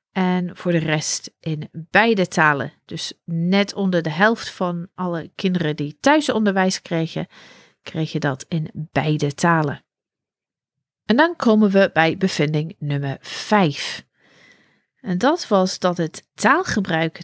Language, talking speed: Dutch, 130 wpm